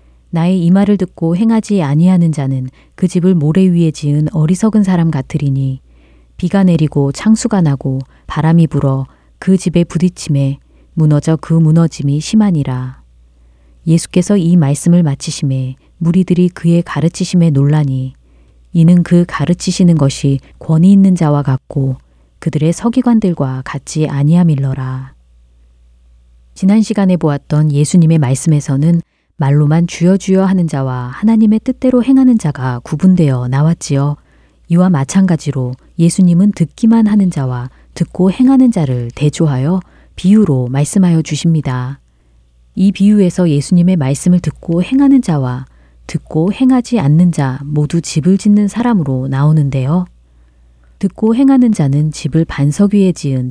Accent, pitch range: native, 135-185 Hz